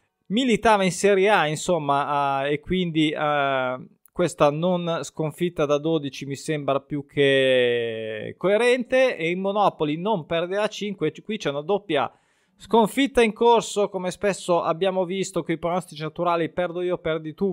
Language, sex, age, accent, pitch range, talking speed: Italian, male, 20-39, native, 140-190 Hz, 155 wpm